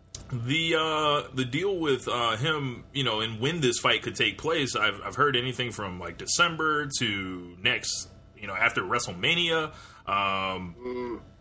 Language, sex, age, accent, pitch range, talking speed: English, male, 20-39, American, 105-140 Hz, 160 wpm